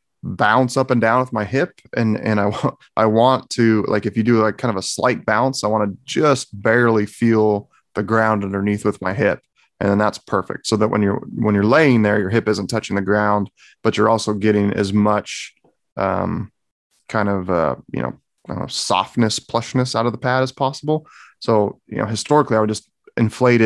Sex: male